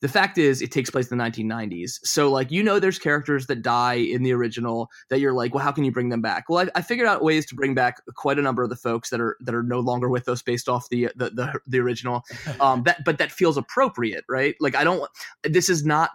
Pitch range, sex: 120-145 Hz, male